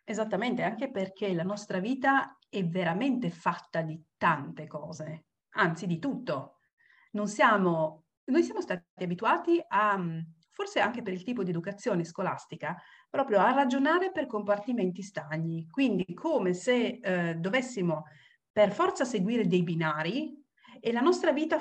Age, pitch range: 40-59, 175-240 Hz